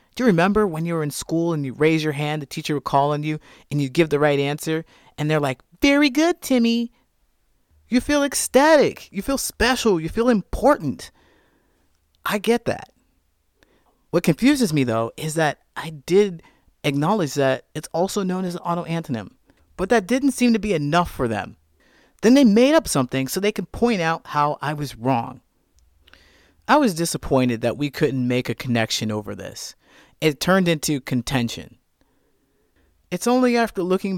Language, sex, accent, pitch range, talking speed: English, male, American, 135-195 Hz, 175 wpm